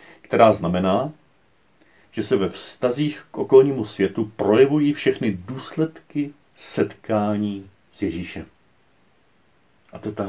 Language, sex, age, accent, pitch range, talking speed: Czech, male, 40-59, native, 95-120 Hz, 110 wpm